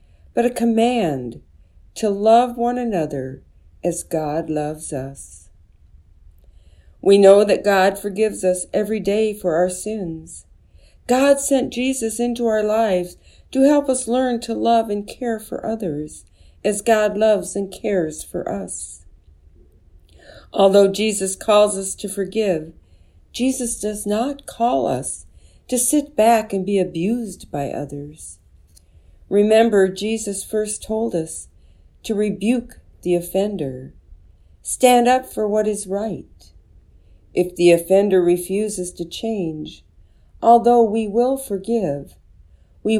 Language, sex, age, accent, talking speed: English, female, 50-69, American, 125 wpm